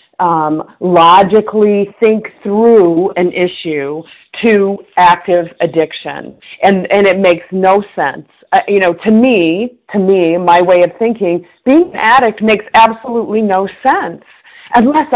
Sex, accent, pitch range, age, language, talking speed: female, American, 180-240 Hz, 50-69, English, 135 wpm